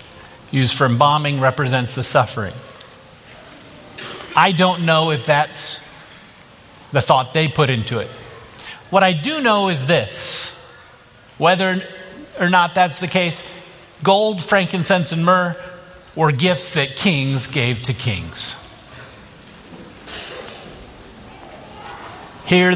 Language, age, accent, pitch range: English, 50-69, American, 130-175 Hz